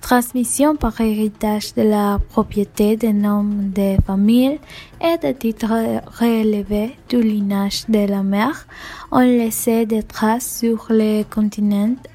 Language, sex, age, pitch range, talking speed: French, female, 10-29, 210-245 Hz, 130 wpm